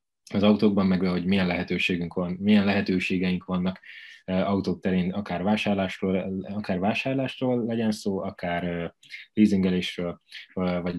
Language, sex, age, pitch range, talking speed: Hungarian, male, 20-39, 90-110 Hz, 115 wpm